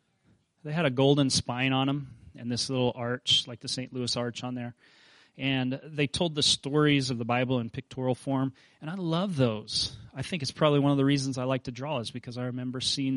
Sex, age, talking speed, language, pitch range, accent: male, 30-49, 230 wpm, English, 120-140 Hz, American